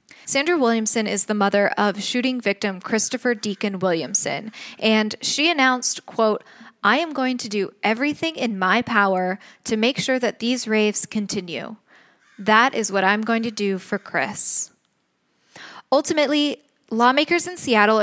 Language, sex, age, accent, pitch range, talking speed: English, female, 10-29, American, 200-245 Hz, 145 wpm